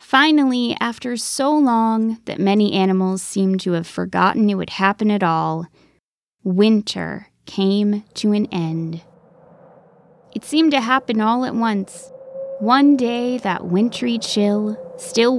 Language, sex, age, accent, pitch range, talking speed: English, female, 20-39, American, 185-235 Hz, 135 wpm